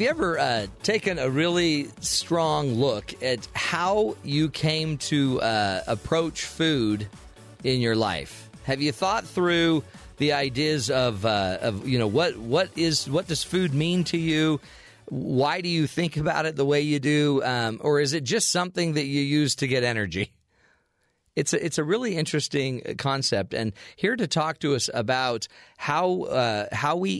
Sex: male